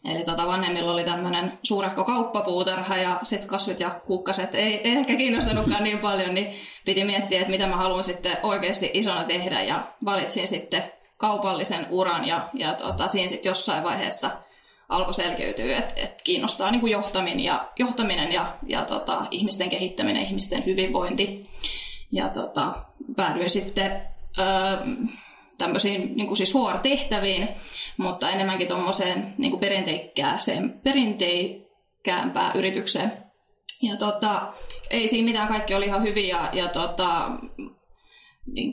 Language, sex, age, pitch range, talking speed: Finnish, female, 20-39, 185-215 Hz, 135 wpm